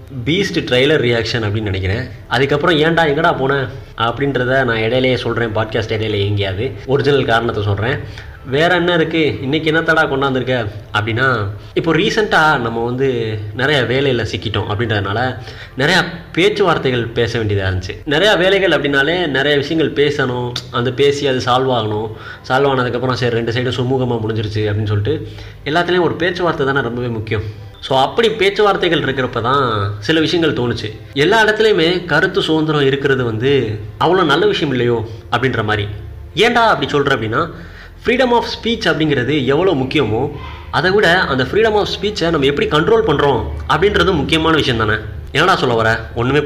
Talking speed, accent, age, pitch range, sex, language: 145 wpm, native, 20-39, 110-150 Hz, male, Tamil